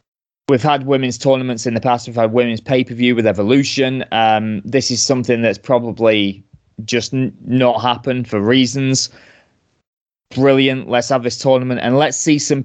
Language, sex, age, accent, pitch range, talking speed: English, male, 20-39, British, 115-130 Hz, 150 wpm